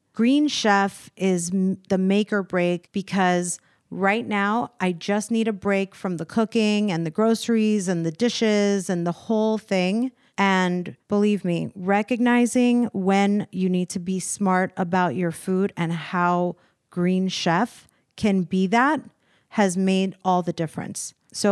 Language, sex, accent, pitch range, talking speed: English, female, American, 180-215 Hz, 150 wpm